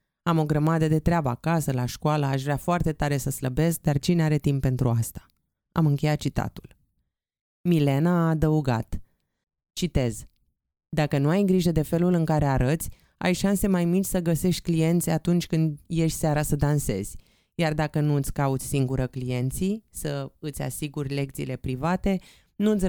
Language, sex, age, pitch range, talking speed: Romanian, female, 20-39, 135-170 Hz, 160 wpm